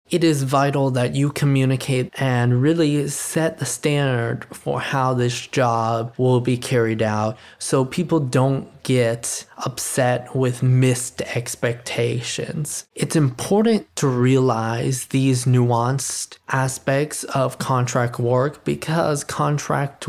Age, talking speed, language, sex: 20-39, 115 wpm, English, male